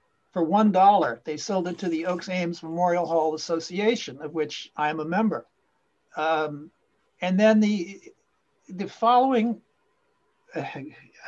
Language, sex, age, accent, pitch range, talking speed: English, male, 60-79, American, 165-220 Hz, 140 wpm